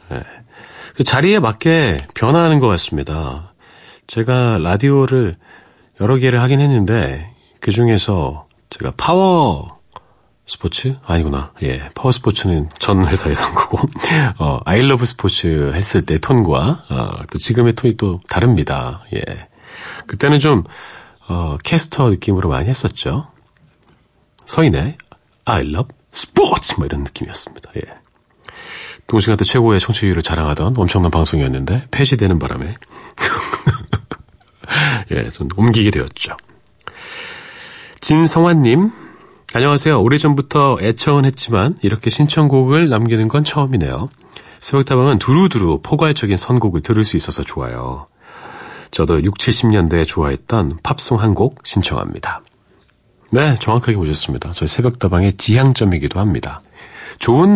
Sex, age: male, 40-59